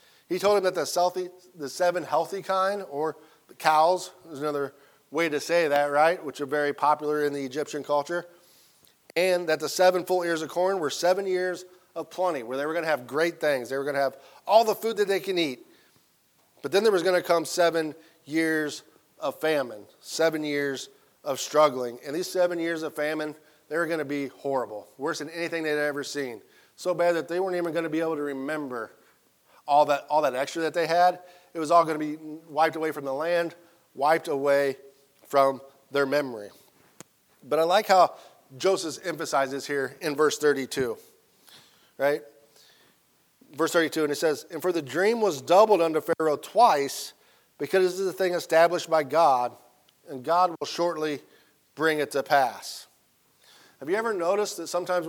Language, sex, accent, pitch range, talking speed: English, male, American, 145-175 Hz, 190 wpm